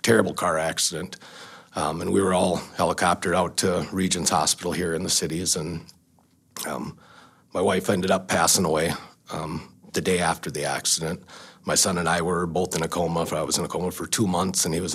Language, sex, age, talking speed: English, male, 40-59, 205 wpm